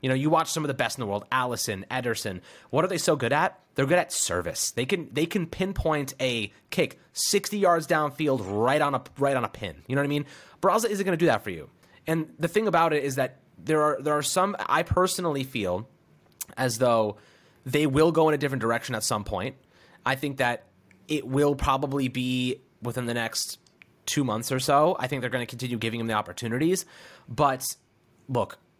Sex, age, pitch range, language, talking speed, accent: male, 30-49, 115-155 Hz, English, 220 wpm, American